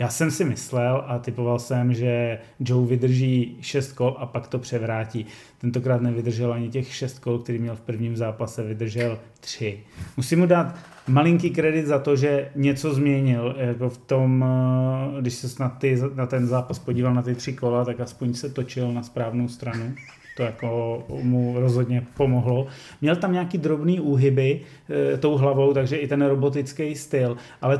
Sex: male